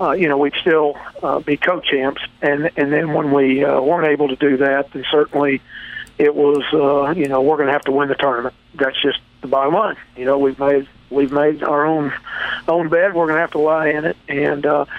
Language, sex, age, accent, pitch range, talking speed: English, male, 50-69, American, 140-160 Hz, 230 wpm